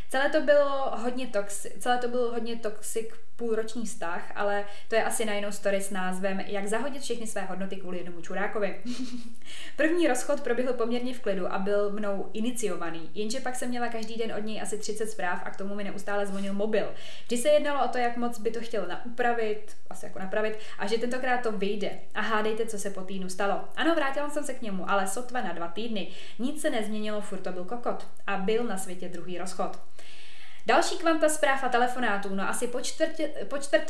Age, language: 20-39, Czech